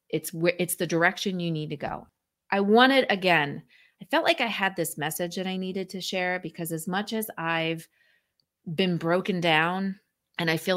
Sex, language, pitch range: female, English, 160-190 Hz